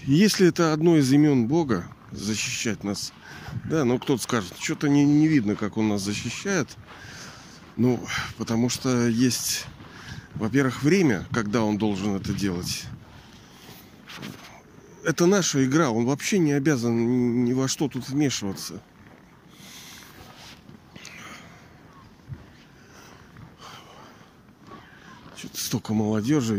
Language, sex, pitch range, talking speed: Russian, male, 110-145 Hz, 105 wpm